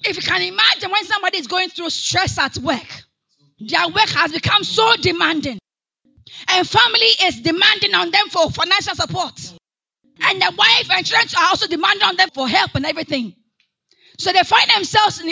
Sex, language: female, English